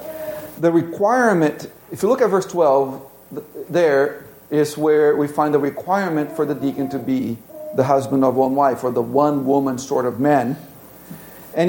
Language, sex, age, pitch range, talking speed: English, male, 50-69, 130-165 Hz, 170 wpm